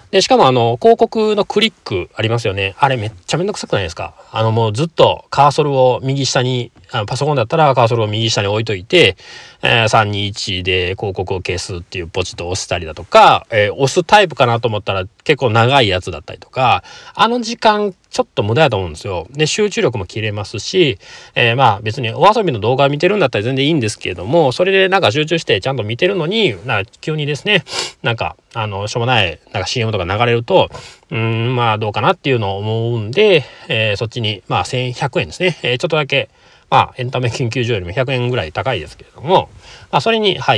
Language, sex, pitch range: Japanese, male, 105-135 Hz